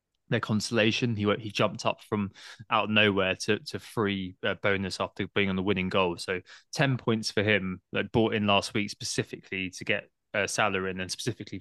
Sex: male